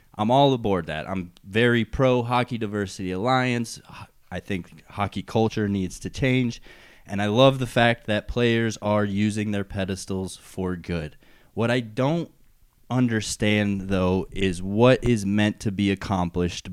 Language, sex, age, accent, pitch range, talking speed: English, male, 20-39, American, 100-120 Hz, 145 wpm